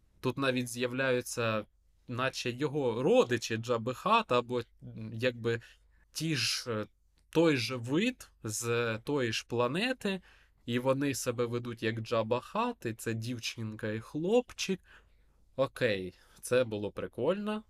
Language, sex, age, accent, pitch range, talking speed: Ukrainian, male, 20-39, native, 115-165 Hz, 120 wpm